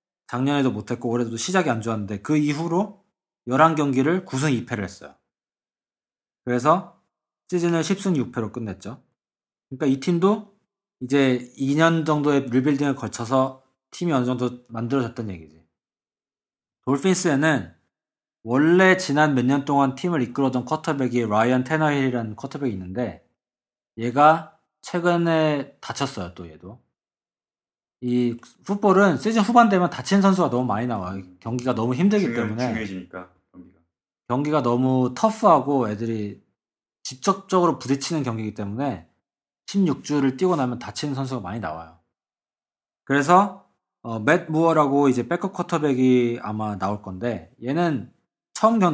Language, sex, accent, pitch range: Korean, male, native, 115-160 Hz